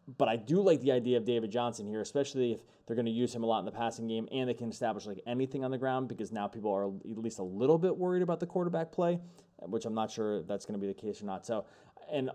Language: English